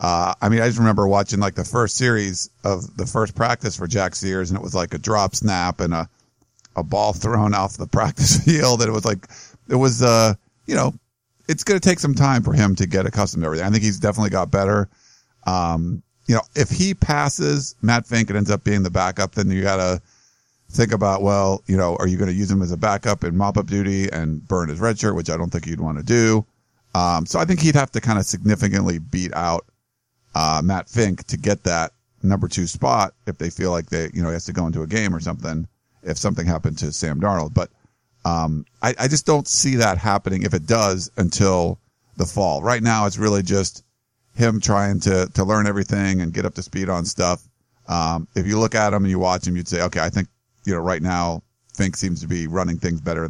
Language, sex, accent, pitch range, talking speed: English, male, American, 90-115 Hz, 235 wpm